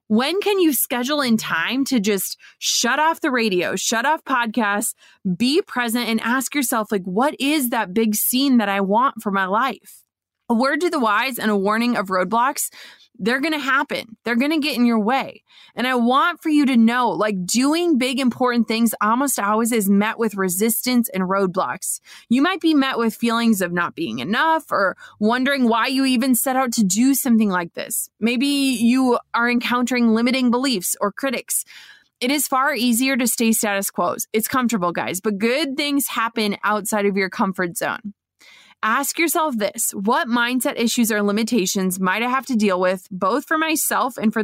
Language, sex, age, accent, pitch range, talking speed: English, female, 20-39, American, 210-265 Hz, 190 wpm